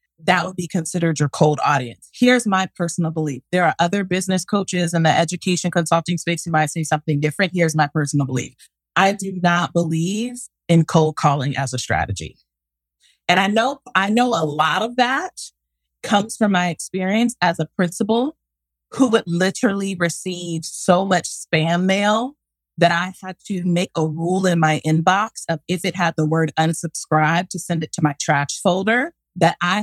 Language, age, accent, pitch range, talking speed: English, 30-49, American, 160-195 Hz, 180 wpm